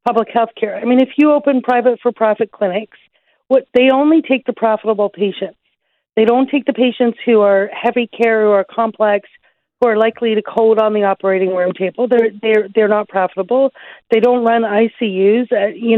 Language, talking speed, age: English, 195 wpm, 40-59